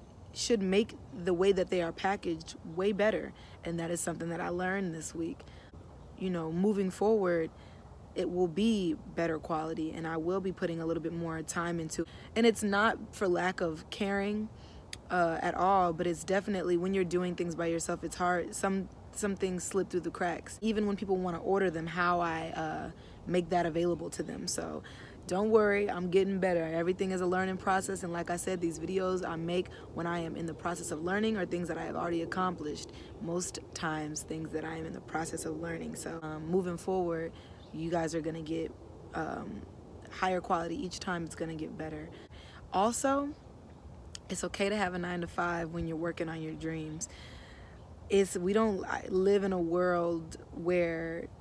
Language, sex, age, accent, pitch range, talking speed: English, female, 20-39, American, 165-190 Hz, 195 wpm